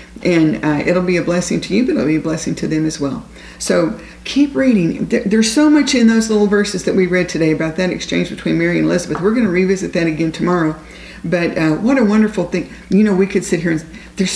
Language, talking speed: English, 245 wpm